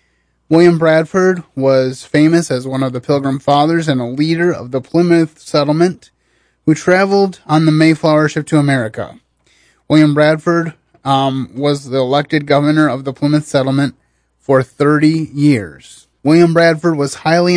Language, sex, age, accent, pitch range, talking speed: English, male, 30-49, American, 135-160 Hz, 145 wpm